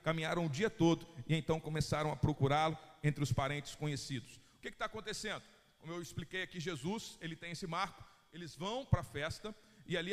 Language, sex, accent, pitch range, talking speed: Portuguese, male, Brazilian, 170-230 Hz, 195 wpm